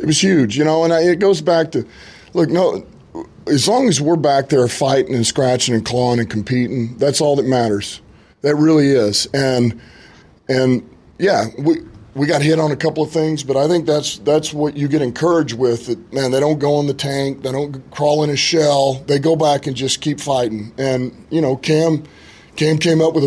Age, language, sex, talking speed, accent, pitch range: 40-59, English, male, 215 wpm, American, 120-150 Hz